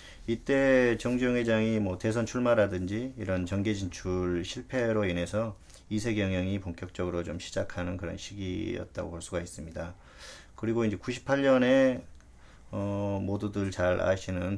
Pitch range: 90-110 Hz